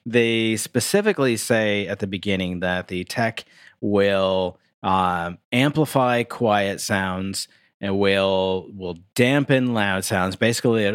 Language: English